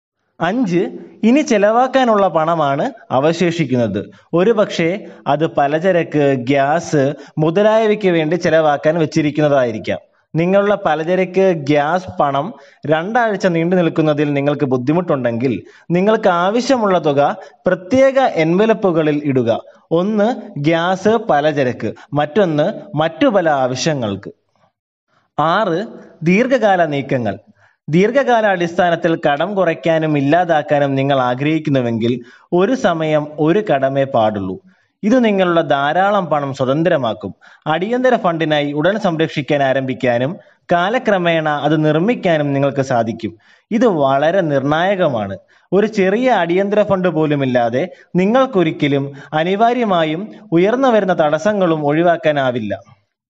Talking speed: 90 wpm